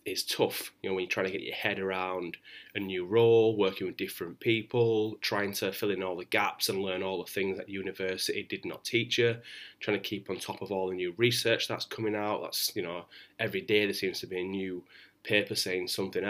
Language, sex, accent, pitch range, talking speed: English, male, British, 95-115 Hz, 235 wpm